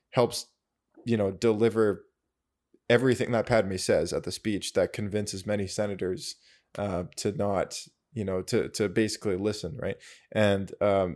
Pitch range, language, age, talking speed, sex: 100-120 Hz, English, 20-39, 145 wpm, male